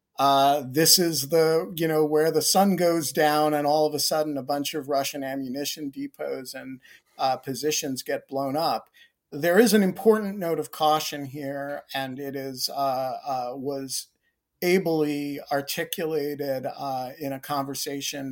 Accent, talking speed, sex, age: American, 155 wpm, male, 50-69